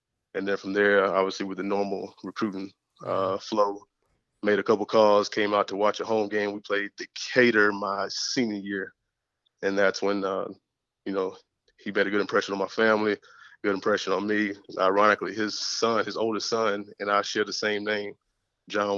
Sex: male